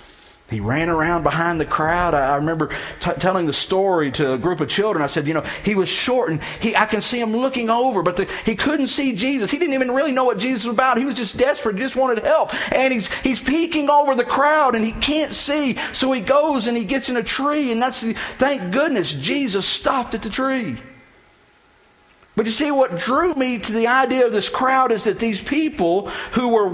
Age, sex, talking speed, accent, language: 50-69, male, 230 wpm, American, English